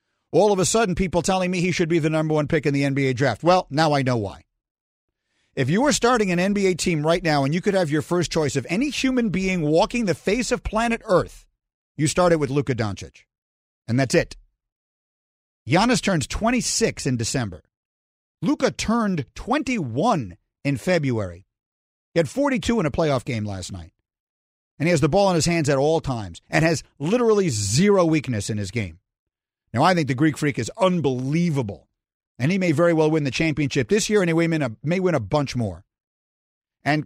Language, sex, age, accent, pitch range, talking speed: English, male, 50-69, American, 120-175 Hz, 195 wpm